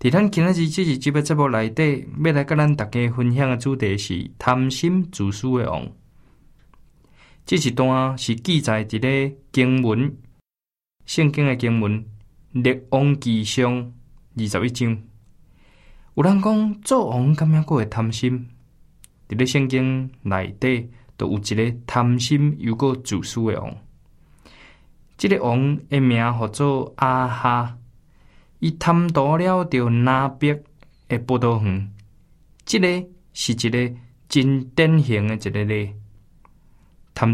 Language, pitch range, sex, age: Chinese, 115-140 Hz, male, 20-39